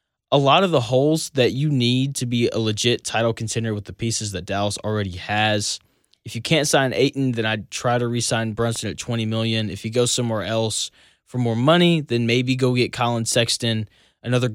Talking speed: 210 wpm